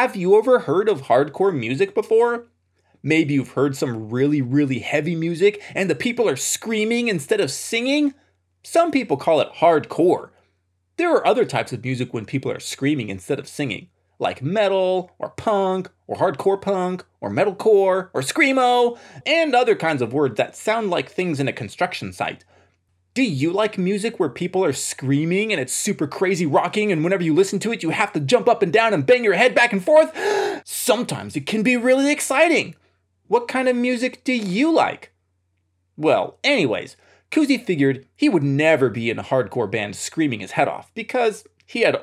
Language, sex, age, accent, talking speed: English, male, 20-39, American, 185 wpm